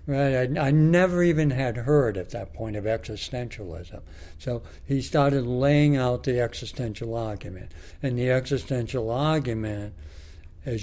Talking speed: 140 wpm